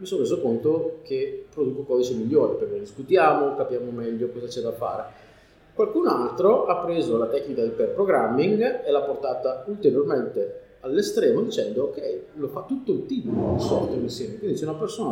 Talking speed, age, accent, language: 170 wpm, 40-59, native, Italian